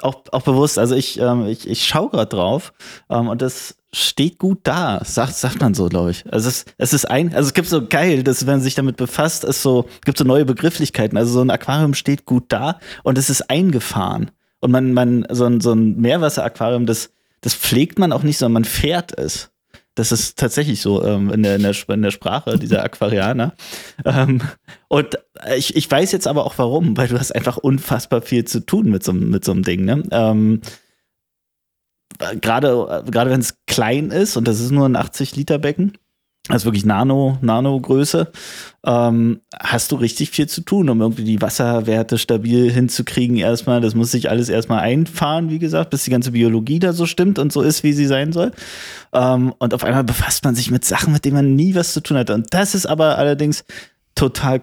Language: German